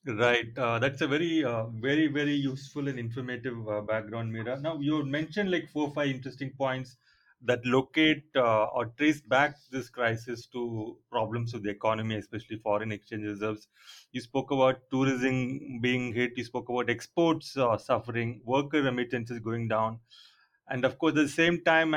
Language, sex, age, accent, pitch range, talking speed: English, male, 30-49, Indian, 120-150 Hz, 170 wpm